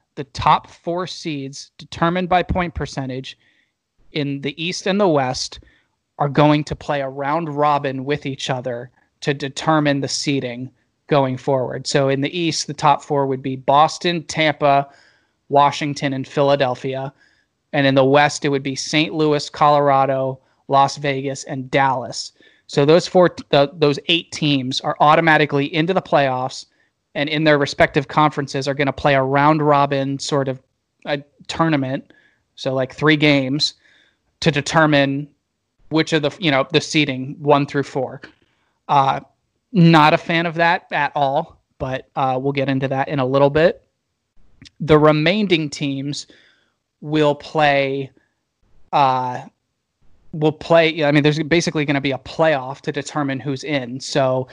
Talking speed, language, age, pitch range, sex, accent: 155 wpm, English, 30-49, 135-155 Hz, male, American